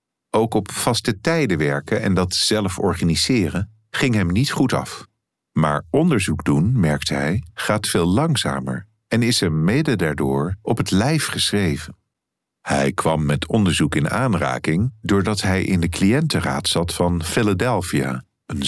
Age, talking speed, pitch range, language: 50-69, 150 wpm, 85-115 Hz, Dutch